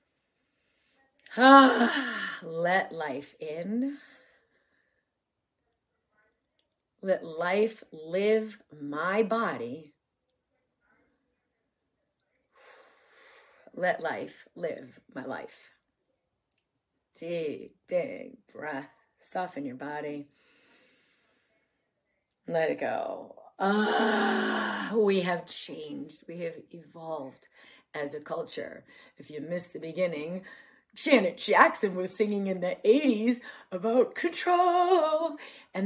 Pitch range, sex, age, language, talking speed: 175-255 Hz, female, 40-59, English, 80 wpm